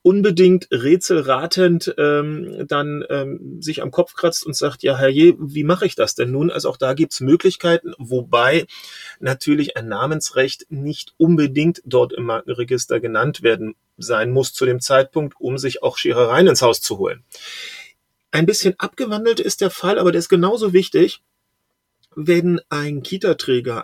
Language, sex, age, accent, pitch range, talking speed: German, male, 30-49, German, 130-185 Hz, 160 wpm